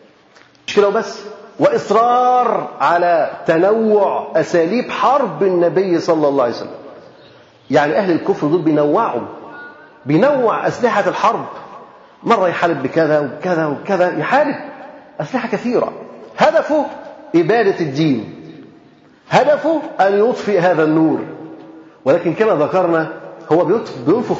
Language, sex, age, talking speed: Arabic, male, 40-59, 100 wpm